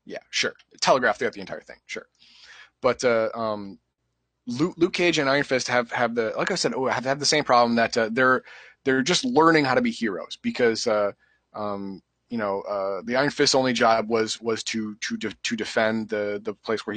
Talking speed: 210 wpm